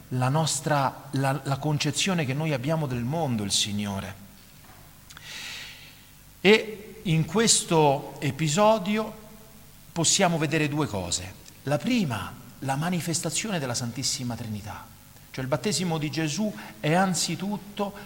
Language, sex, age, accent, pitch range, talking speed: Italian, male, 50-69, native, 130-185 Hz, 115 wpm